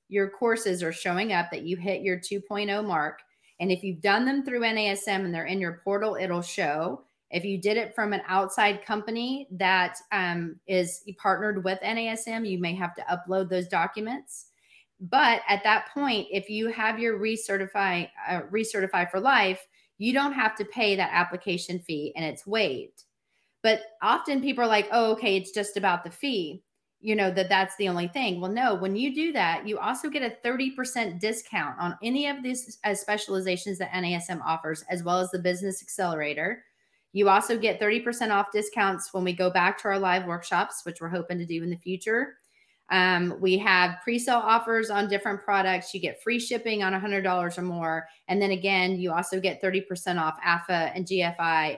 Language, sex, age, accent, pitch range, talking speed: English, female, 30-49, American, 180-220 Hz, 190 wpm